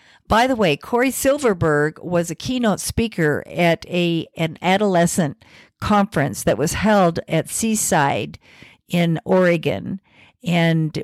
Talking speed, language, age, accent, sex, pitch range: 120 wpm, English, 50-69, American, female, 160-200 Hz